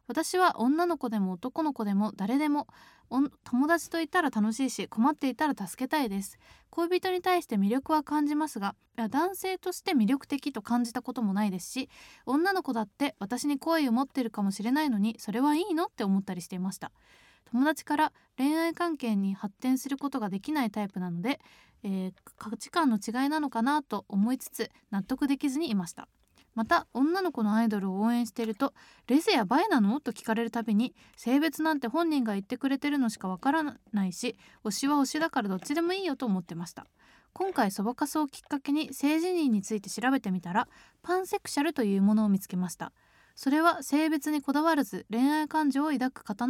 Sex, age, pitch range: female, 20-39, 220-305 Hz